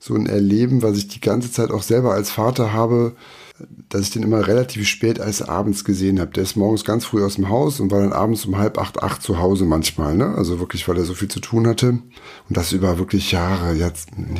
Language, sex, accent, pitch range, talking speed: German, male, German, 95-110 Hz, 240 wpm